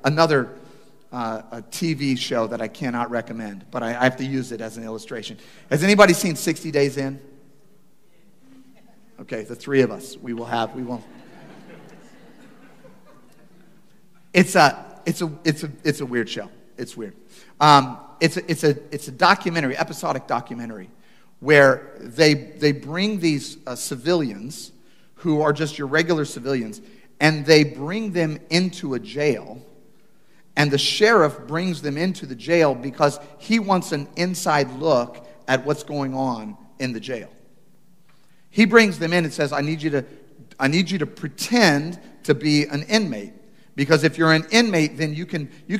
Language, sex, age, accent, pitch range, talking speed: English, male, 40-59, American, 140-175 Hz, 165 wpm